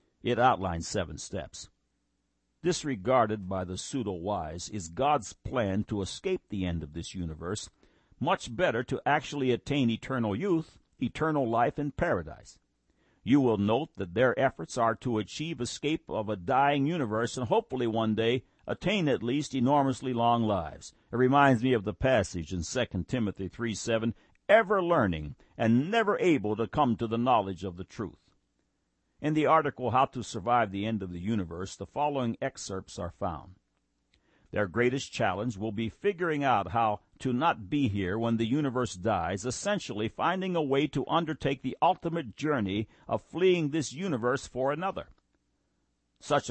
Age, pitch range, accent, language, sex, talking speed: 60-79, 100-140 Hz, American, English, male, 160 wpm